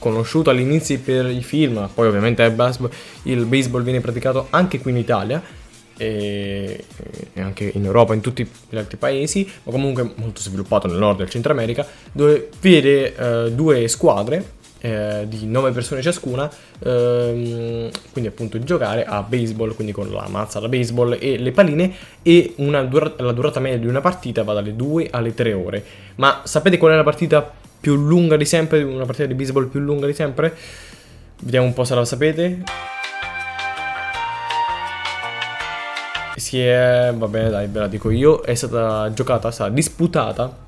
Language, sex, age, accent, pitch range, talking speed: Italian, male, 20-39, native, 115-150 Hz, 165 wpm